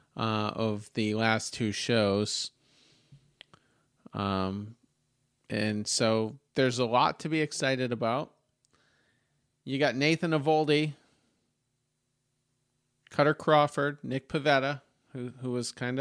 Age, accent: 40-59, American